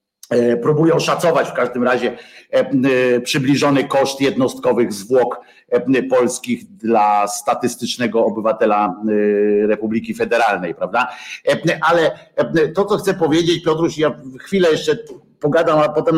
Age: 50-69